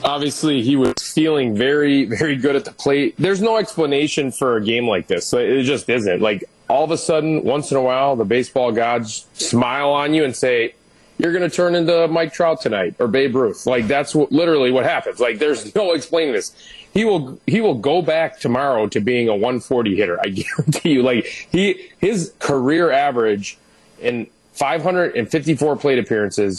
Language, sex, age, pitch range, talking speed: English, male, 30-49, 120-160 Hz, 190 wpm